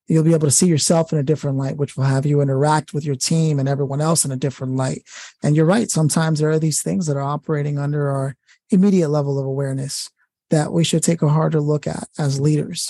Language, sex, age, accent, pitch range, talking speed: English, male, 20-39, American, 145-165 Hz, 240 wpm